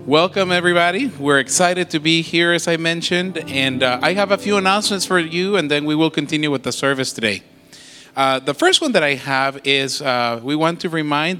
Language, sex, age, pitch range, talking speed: English, male, 30-49, 135-170 Hz, 215 wpm